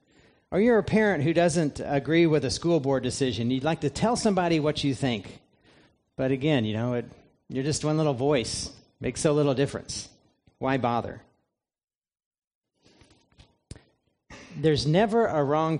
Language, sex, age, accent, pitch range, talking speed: English, male, 40-59, American, 125-155 Hz, 150 wpm